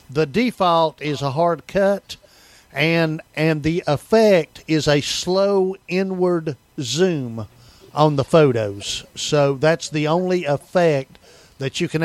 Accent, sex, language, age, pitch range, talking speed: American, male, English, 50-69, 140-170 Hz, 130 wpm